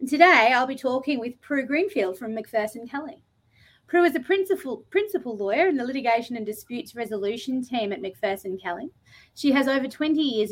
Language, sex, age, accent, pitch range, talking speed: English, female, 30-49, Australian, 215-285 Hz, 175 wpm